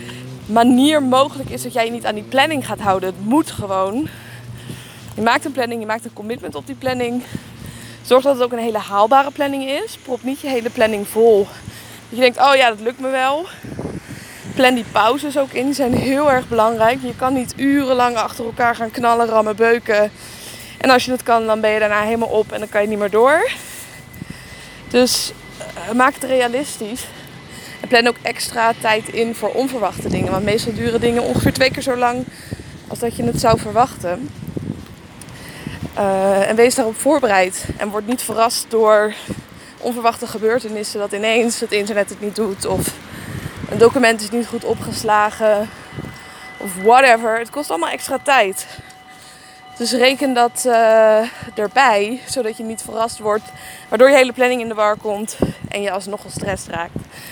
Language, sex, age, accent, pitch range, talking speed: Dutch, female, 20-39, Dutch, 210-250 Hz, 180 wpm